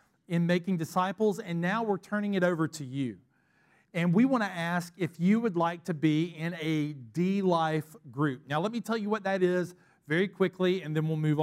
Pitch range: 165-205 Hz